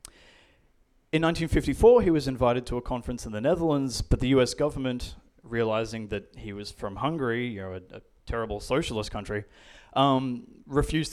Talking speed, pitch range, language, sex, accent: 160 wpm, 105-135 Hz, English, male, Australian